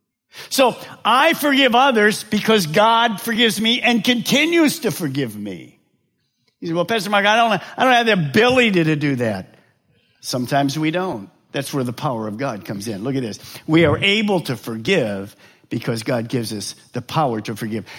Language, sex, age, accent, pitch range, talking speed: English, male, 50-69, American, 130-220 Hz, 180 wpm